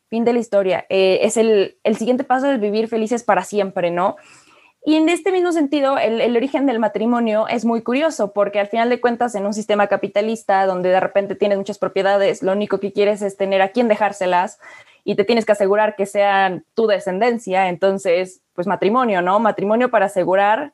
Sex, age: female, 20-39